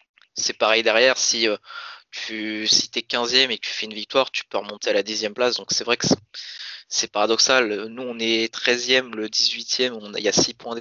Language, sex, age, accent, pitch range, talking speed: French, male, 20-39, French, 110-130 Hz, 235 wpm